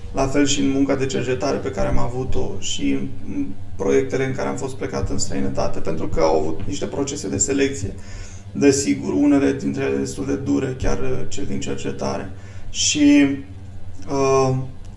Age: 20-39